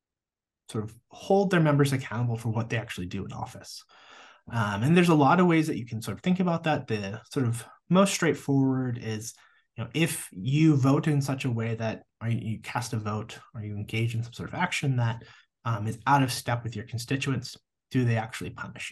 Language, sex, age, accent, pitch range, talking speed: English, male, 30-49, American, 110-140 Hz, 215 wpm